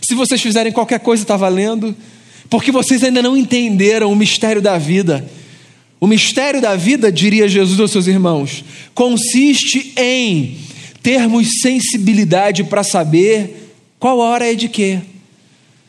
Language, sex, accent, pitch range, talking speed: Portuguese, male, Brazilian, 190-250 Hz, 135 wpm